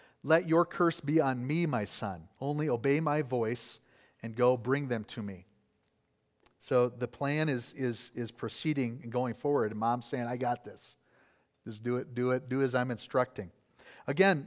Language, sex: English, male